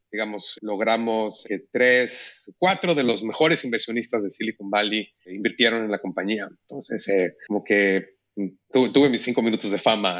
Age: 30-49